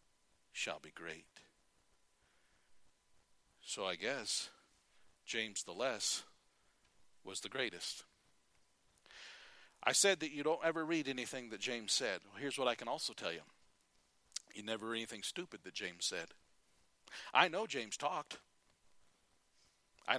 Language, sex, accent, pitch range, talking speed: English, male, American, 135-220 Hz, 130 wpm